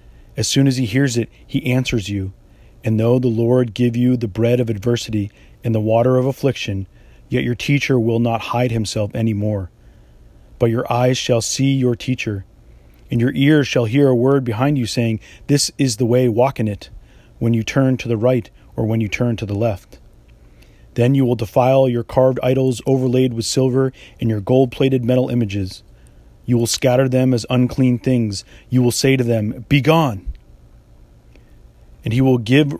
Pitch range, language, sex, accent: 110-130 Hz, English, male, American